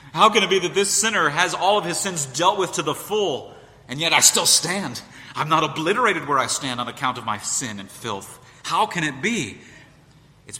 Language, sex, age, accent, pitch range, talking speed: English, male, 30-49, American, 110-135 Hz, 225 wpm